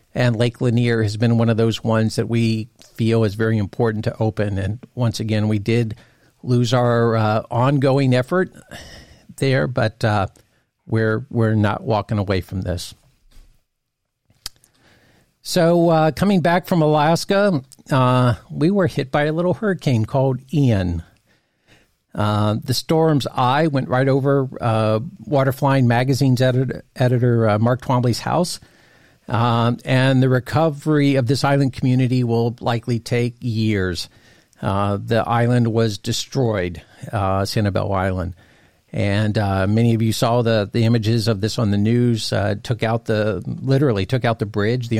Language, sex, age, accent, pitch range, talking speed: English, male, 50-69, American, 110-135 Hz, 150 wpm